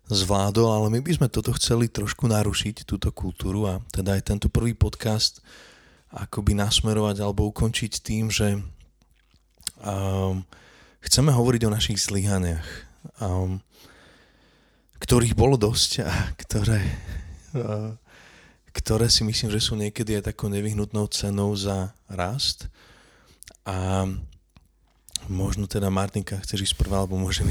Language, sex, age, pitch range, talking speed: Slovak, male, 20-39, 95-110 Hz, 125 wpm